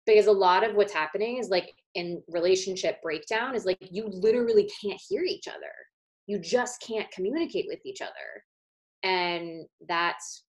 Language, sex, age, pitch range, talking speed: English, female, 20-39, 175-235 Hz, 160 wpm